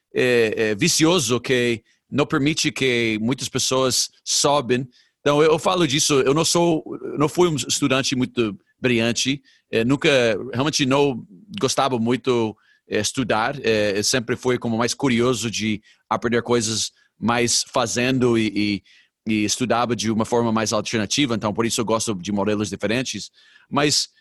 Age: 40-59